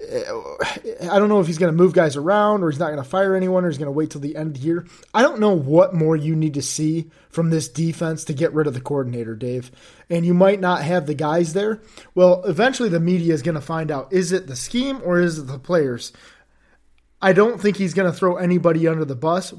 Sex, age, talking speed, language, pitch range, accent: male, 30-49, 250 wpm, English, 140-180 Hz, American